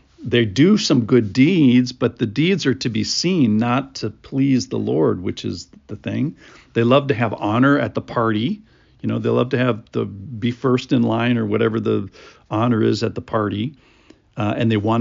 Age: 50-69